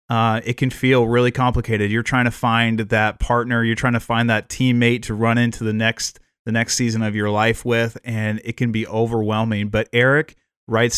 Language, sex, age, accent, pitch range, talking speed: English, male, 30-49, American, 110-125 Hz, 210 wpm